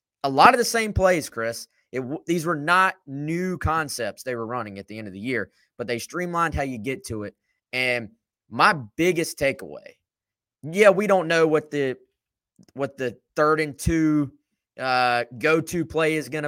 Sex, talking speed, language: male, 180 wpm, English